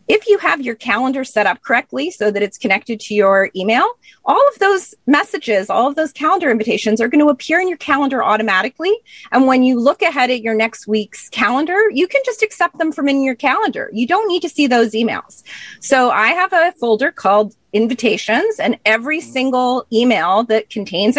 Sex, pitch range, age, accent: female, 205-290 Hz, 30-49, American